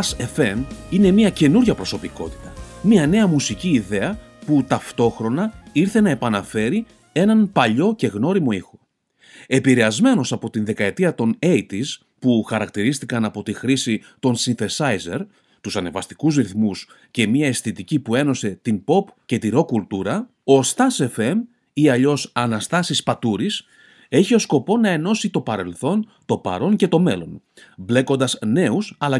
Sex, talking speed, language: male, 140 wpm, Greek